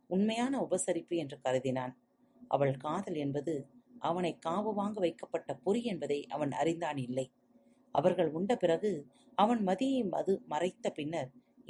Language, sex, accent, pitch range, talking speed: Tamil, female, native, 145-195 Hz, 125 wpm